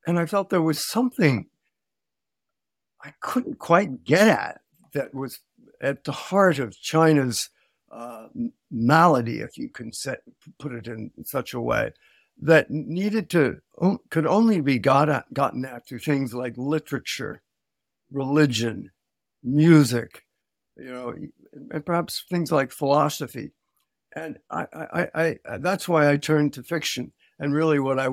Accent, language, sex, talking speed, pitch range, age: American, English, male, 145 wpm, 125-155 Hz, 60-79